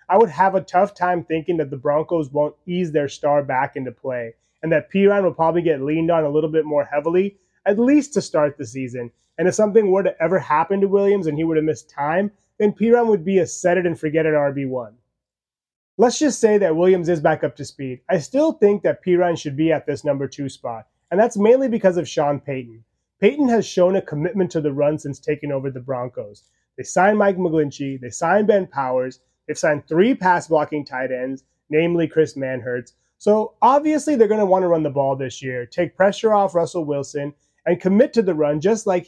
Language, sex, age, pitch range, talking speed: English, male, 30-49, 145-190 Hz, 225 wpm